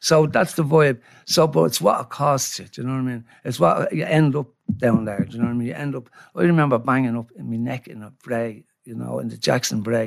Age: 60-79